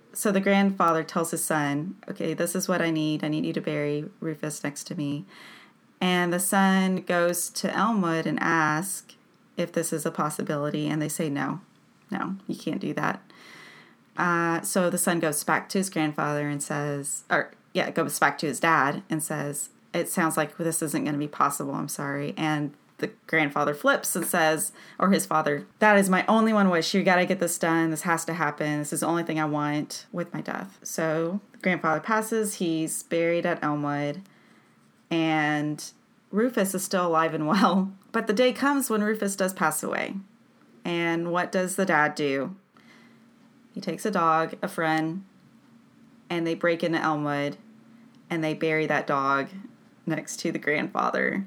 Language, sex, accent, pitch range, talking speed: English, female, American, 155-195 Hz, 185 wpm